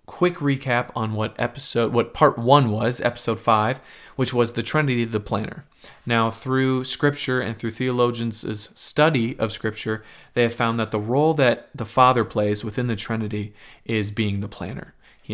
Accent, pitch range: American, 110-125 Hz